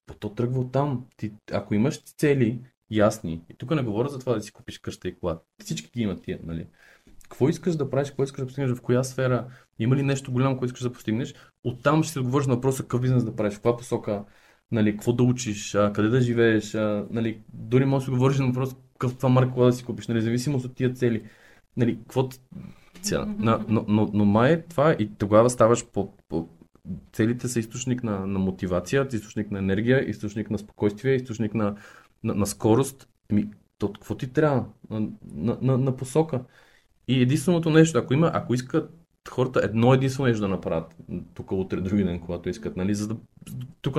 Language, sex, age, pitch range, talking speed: Bulgarian, male, 20-39, 105-130 Hz, 205 wpm